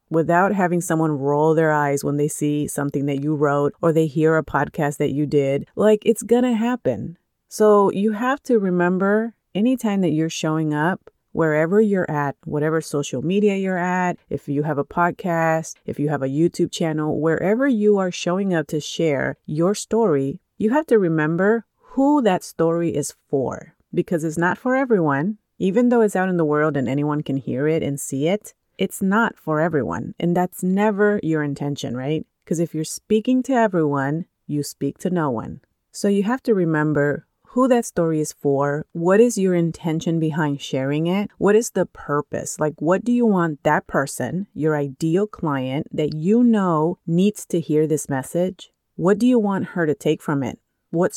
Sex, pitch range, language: female, 150-195 Hz, English